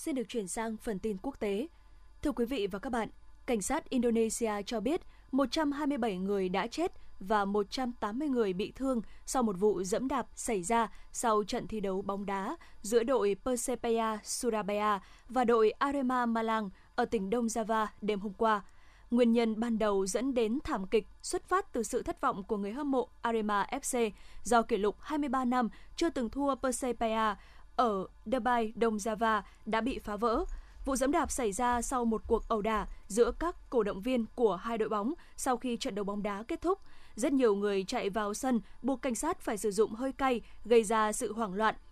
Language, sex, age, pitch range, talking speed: Vietnamese, female, 20-39, 215-260 Hz, 200 wpm